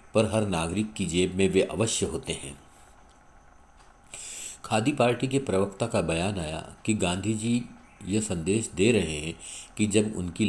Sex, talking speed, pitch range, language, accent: male, 155 wpm, 90-115 Hz, Hindi, native